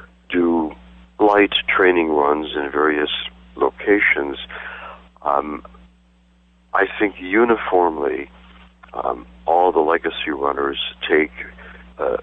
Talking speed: 90 wpm